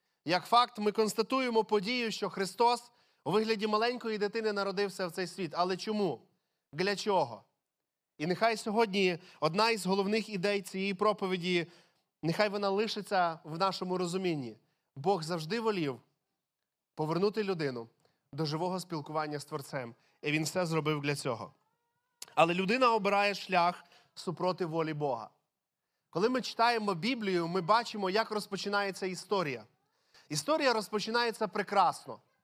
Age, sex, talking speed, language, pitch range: 30-49, male, 130 wpm, Ukrainian, 175-220 Hz